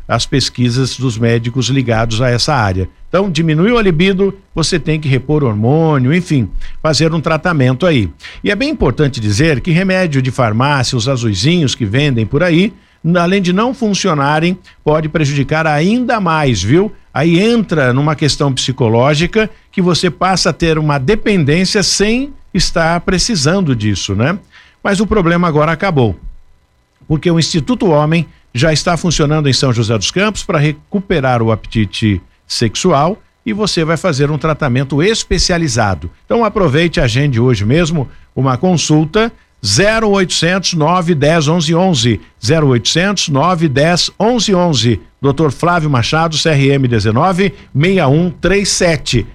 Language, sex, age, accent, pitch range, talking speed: Portuguese, male, 50-69, Brazilian, 130-180 Hz, 135 wpm